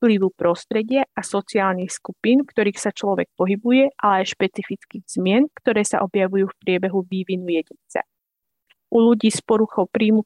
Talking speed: 145 wpm